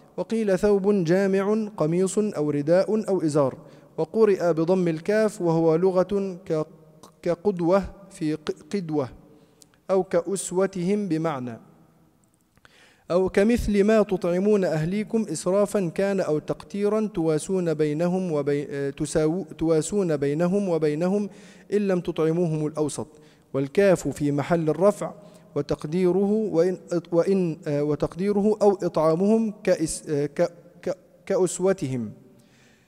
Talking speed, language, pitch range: 90 wpm, Arabic, 155-195 Hz